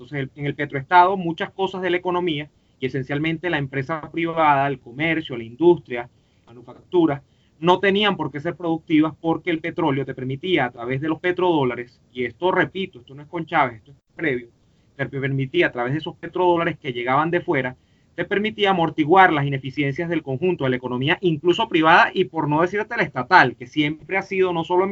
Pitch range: 135-180 Hz